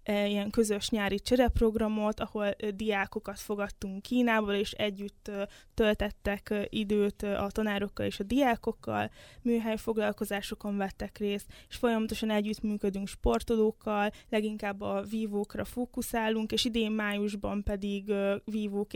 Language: Hungarian